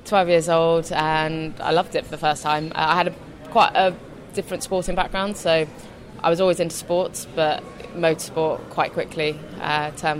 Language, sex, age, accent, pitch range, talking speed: English, female, 20-39, British, 150-170 Hz, 175 wpm